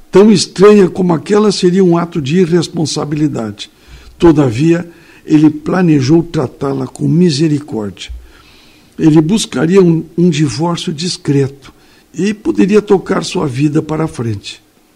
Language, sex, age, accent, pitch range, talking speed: Portuguese, male, 60-79, Brazilian, 140-180 Hz, 115 wpm